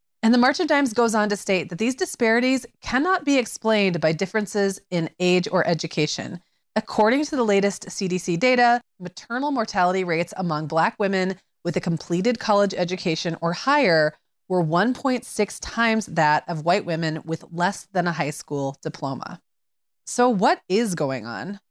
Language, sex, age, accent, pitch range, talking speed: English, female, 30-49, American, 165-225 Hz, 165 wpm